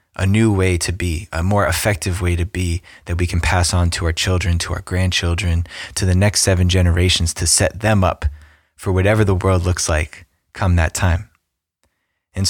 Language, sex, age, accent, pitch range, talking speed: English, male, 20-39, American, 85-100 Hz, 195 wpm